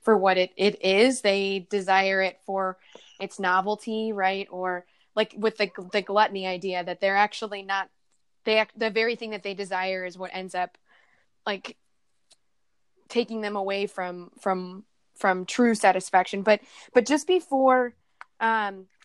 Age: 20-39